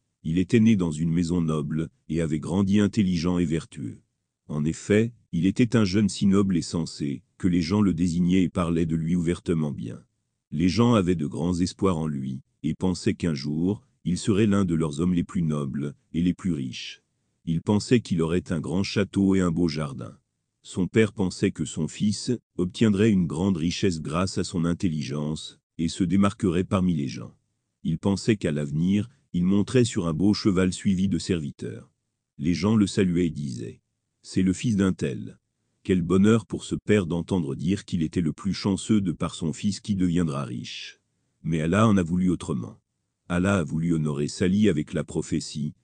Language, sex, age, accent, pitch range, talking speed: French, male, 40-59, French, 80-105 Hz, 190 wpm